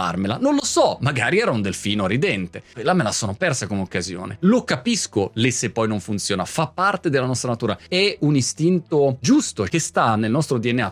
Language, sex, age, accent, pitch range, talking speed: Italian, male, 30-49, native, 110-175 Hz, 190 wpm